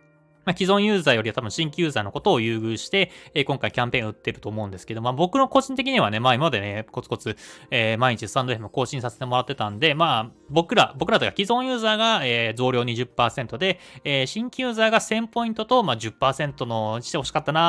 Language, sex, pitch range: Japanese, male, 115-175 Hz